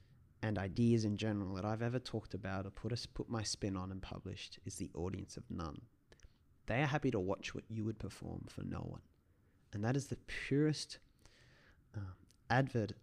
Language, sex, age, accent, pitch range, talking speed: English, male, 30-49, Australian, 100-115 Hz, 195 wpm